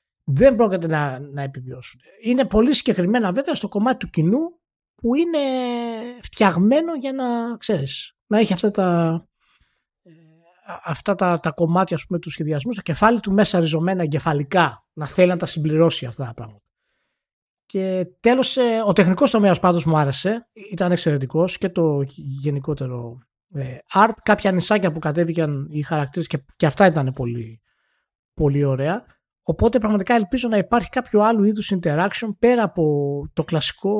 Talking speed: 150 wpm